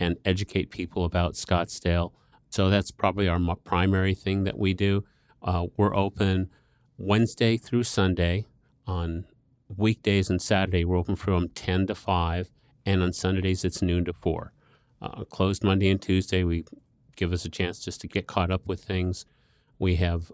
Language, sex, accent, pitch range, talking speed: English, male, American, 90-100 Hz, 165 wpm